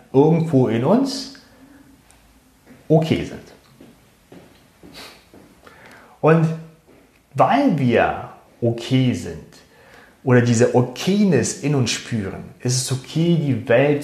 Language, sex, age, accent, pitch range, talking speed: German, male, 30-49, German, 115-145 Hz, 90 wpm